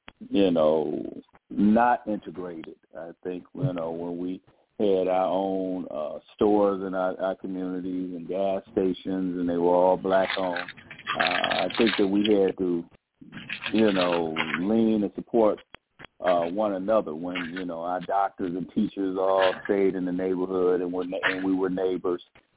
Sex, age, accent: male, 50-69, American